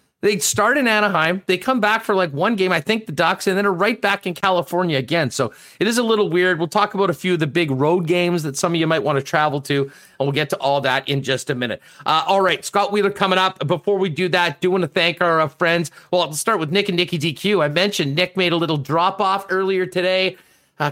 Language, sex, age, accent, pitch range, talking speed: English, male, 40-59, American, 140-185 Hz, 275 wpm